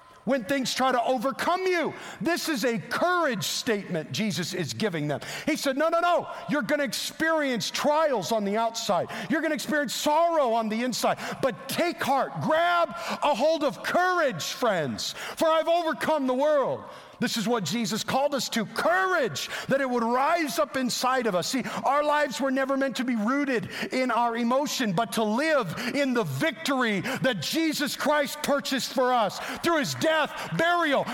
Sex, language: male, English